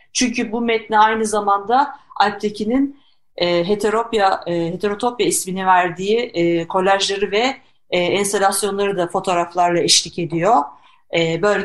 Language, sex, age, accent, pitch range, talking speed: Turkish, female, 50-69, native, 180-235 Hz, 90 wpm